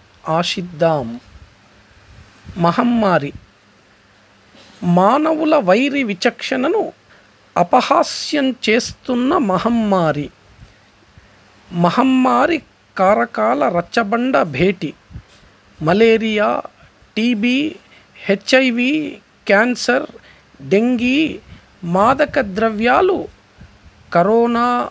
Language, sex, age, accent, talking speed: Telugu, male, 50-69, native, 50 wpm